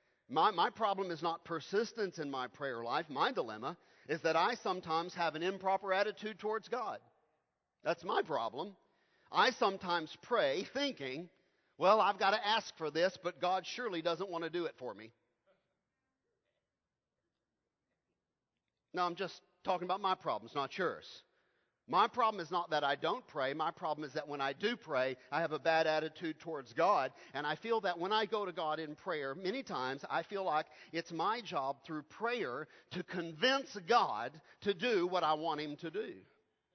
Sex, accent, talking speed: male, American, 180 wpm